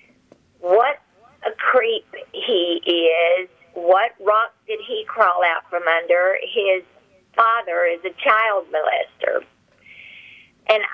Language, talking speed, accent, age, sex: English, 110 wpm, American, 50-69, female